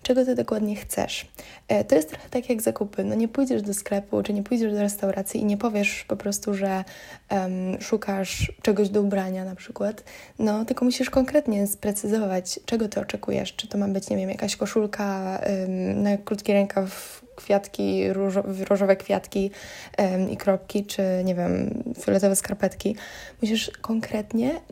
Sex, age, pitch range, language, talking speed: female, 10-29, 195-220 Hz, Polish, 150 wpm